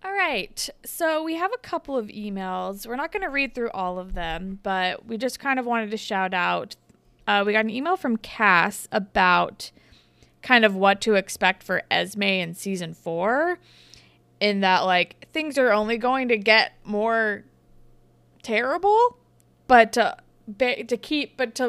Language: English